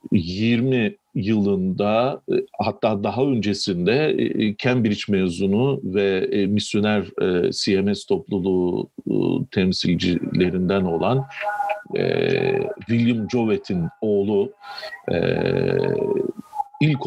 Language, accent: Turkish, native